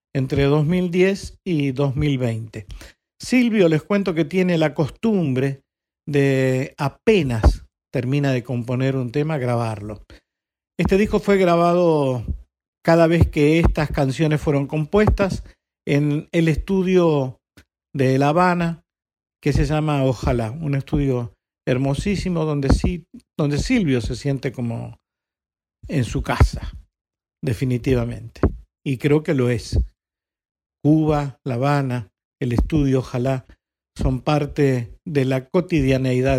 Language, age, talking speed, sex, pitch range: Spanish, 50-69, 110 wpm, male, 125-165 Hz